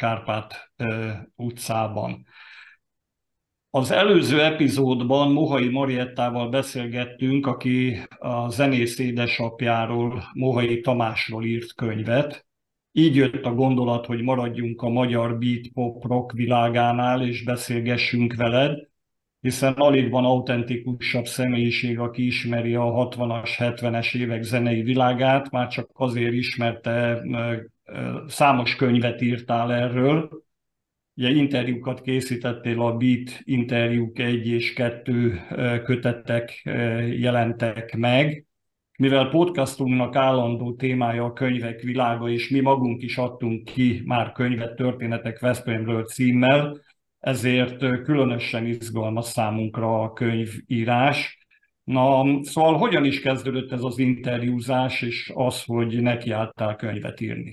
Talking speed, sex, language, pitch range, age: 105 wpm, male, Hungarian, 120-130 Hz, 50-69